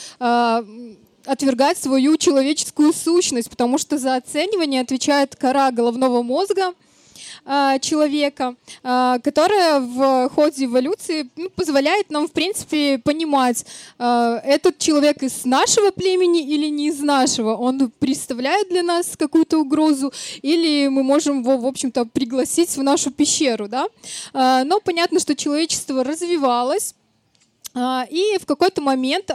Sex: female